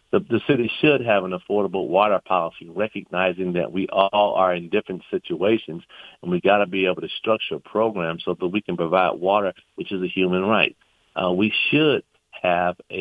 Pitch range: 95-115 Hz